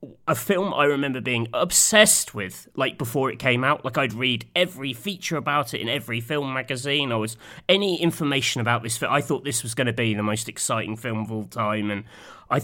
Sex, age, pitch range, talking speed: male, 30-49, 115-165 Hz, 220 wpm